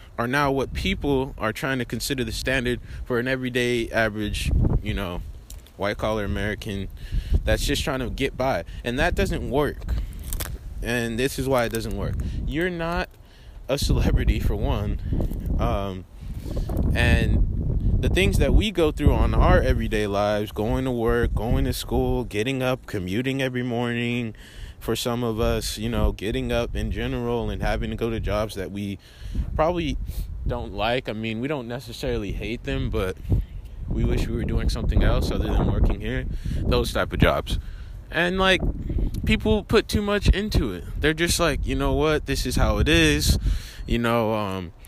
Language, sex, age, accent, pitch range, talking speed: English, male, 20-39, American, 100-130 Hz, 175 wpm